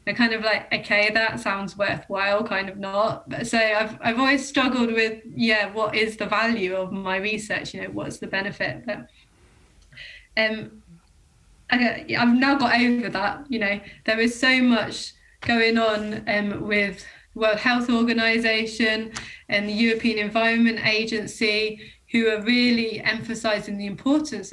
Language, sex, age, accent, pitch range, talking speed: English, female, 20-39, British, 205-235 Hz, 155 wpm